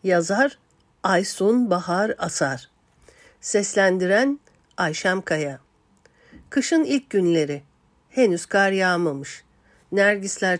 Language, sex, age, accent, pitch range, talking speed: Turkish, female, 60-79, native, 155-230 Hz, 80 wpm